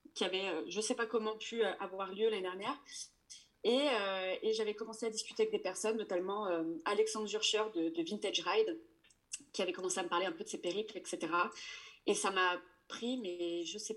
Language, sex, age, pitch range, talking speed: French, female, 20-39, 190-255 Hz, 215 wpm